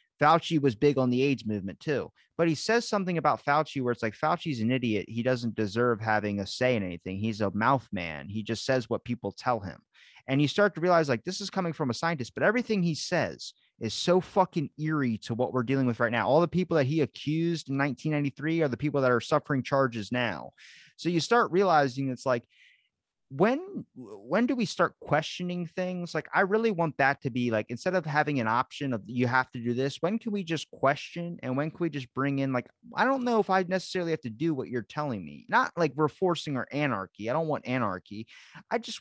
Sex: male